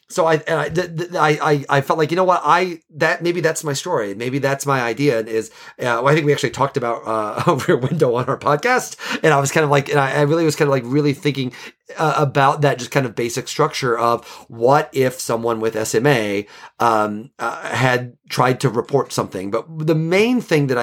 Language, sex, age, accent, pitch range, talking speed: English, male, 30-49, American, 115-155 Hz, 230 wpm